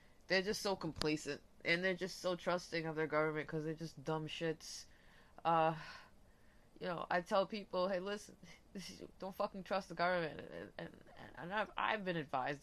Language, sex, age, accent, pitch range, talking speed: English, female, 20-39, American, 160-220 Hz, 180 wpm